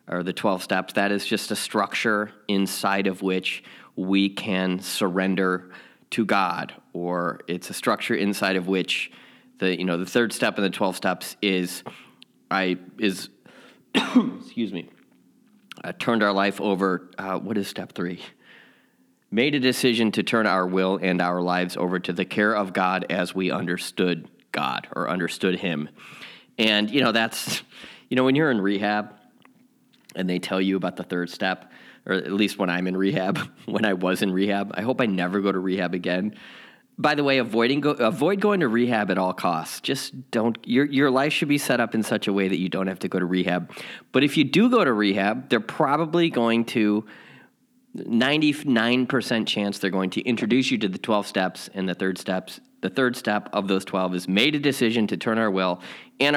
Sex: male